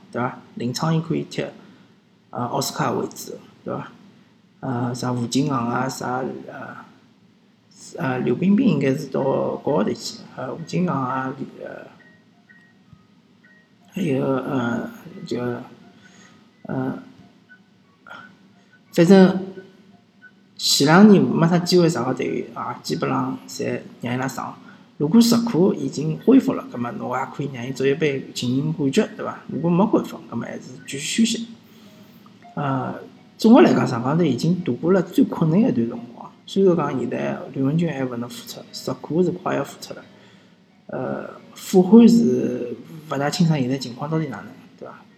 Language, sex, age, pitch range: Chinese, male, 50-69, 135-210 Hz